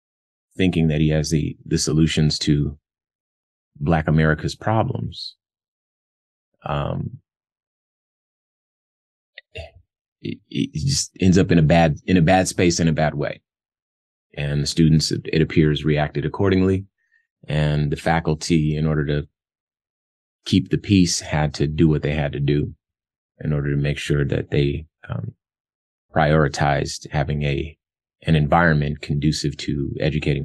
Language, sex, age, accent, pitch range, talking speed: English, male, 30-49, American, 75-85 Hz, 135 wpm